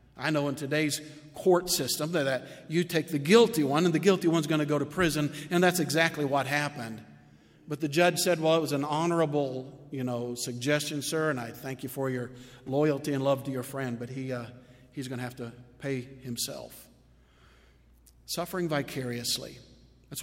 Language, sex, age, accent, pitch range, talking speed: English, male, 50-69, American, 135-160 Hz, 190 wpm